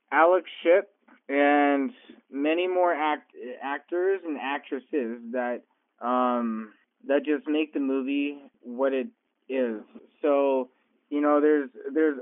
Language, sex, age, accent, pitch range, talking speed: English, male, 20-39, American, 130-160 Hz, 120 wpm